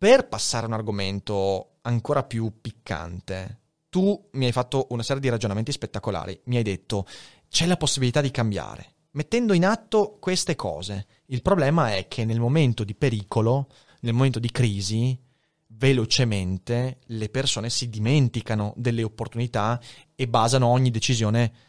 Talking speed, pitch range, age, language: 145 wpm, 115-150 Hz, 30-49, Italian